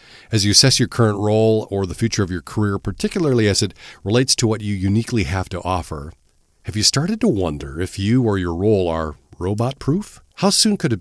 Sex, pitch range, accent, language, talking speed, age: male, 90-120 Hz, American, English, 215 wpm, 40-59